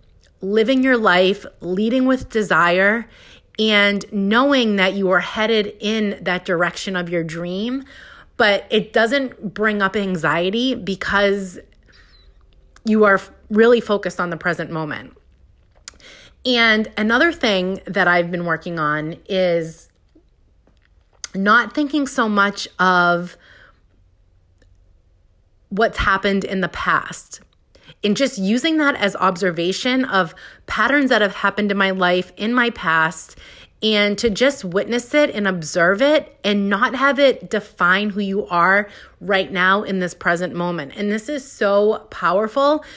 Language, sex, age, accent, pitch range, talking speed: English, female, 30-49, American, 175-220 Hz, 135 wpm